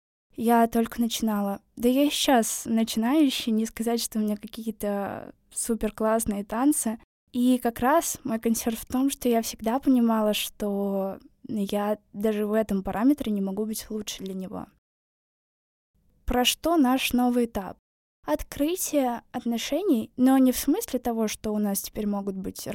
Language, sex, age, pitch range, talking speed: Russian, female, 20-39, 215-250 Hz, 150 wpm